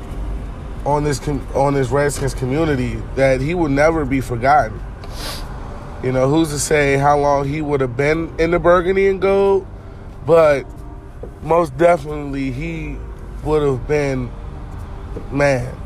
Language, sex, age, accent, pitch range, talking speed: English, male, 20-39, American, 125-155 Hz, 140 wpm